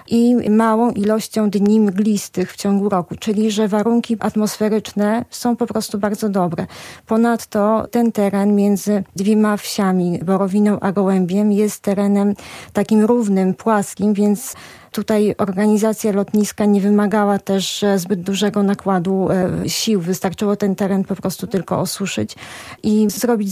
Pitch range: 195-215 Hz